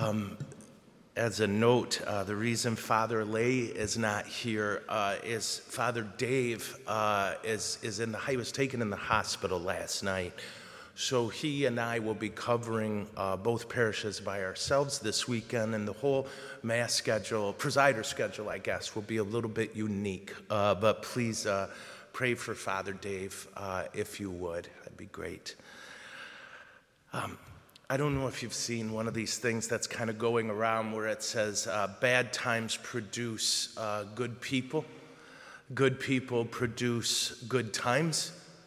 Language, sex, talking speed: English, male, 160 wpm